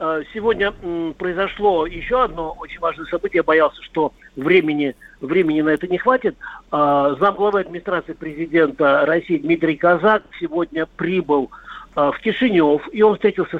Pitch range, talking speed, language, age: 145-185 Hz, 130 wpm, Russian, 50-69